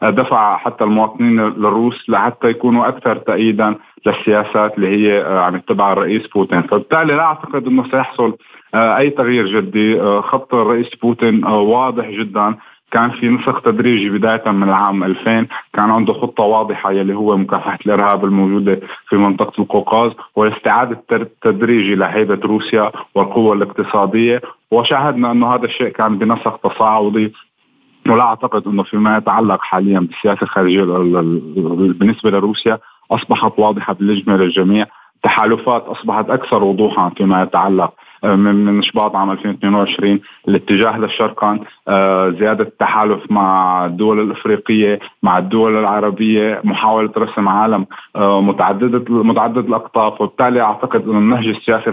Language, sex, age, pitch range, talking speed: Arabic, male, 30-49, 100-115 Hz, 120 wpm